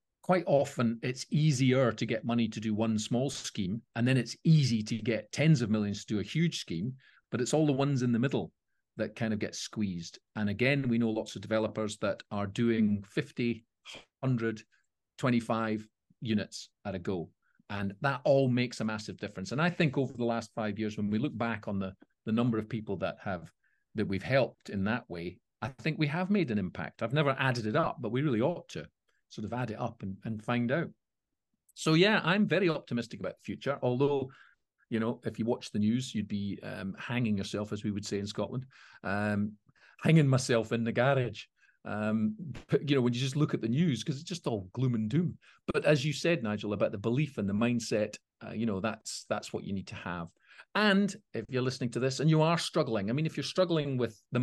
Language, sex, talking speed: English, male, 225 wpm